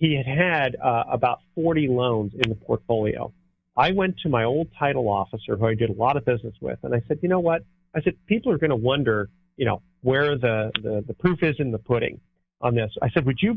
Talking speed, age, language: 245 wpm, 40-59, English